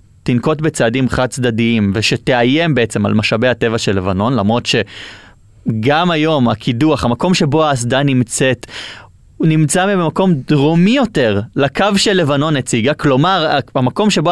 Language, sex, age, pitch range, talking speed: Hebrew, male, 20-39, 115-170 Hz, 130 wpm